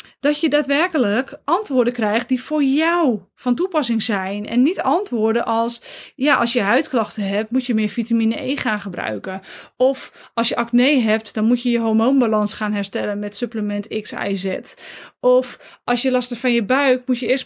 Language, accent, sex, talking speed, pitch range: Dutch, Dutch, female, 190 wpm, 215-255 Hz